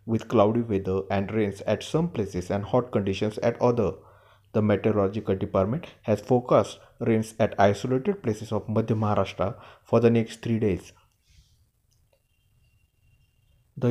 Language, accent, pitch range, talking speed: Marathi, native, 100-120 Hz, 135 wpm